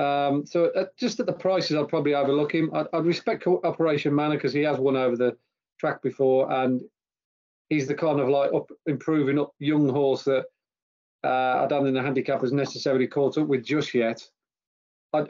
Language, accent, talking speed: English, British, 195 wpm